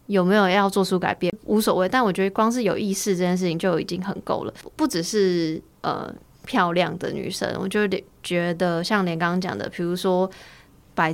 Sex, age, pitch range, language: female, 20-39, 175-215 Hz, Chinese